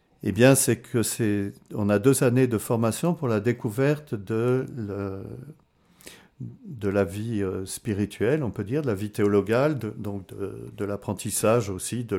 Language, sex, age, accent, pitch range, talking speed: French, male, 50-69, French, 100-125 Hz, 160 wpm